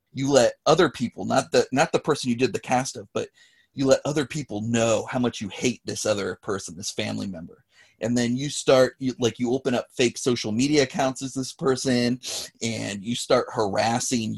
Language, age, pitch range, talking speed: English, 30-49, 115-145 Hz, 210 wpm